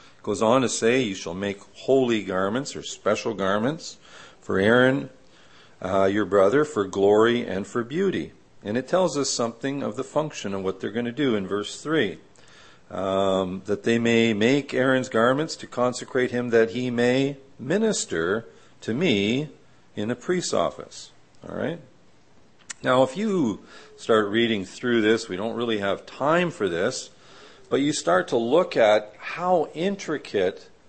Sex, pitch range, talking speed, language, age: male, 105-135 Hz, 160 wpm, English, 50-69